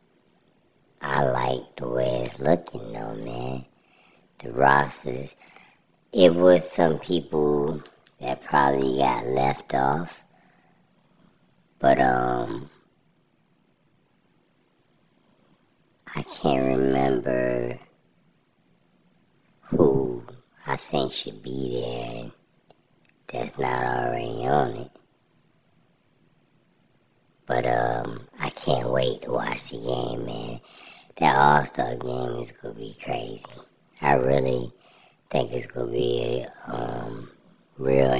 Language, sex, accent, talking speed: English, male, American, 95 wpm